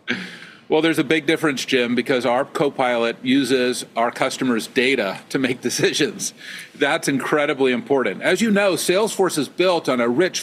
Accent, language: American, English